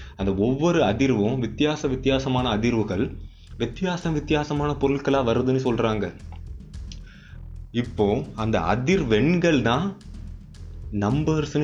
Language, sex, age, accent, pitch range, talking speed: Tamil, male, 20-39, native, 100-130 Hz, 50 wpm